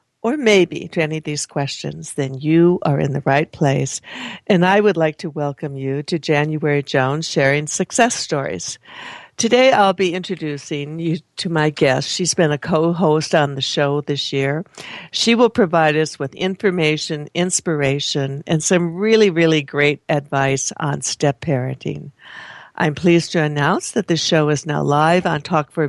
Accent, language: American, English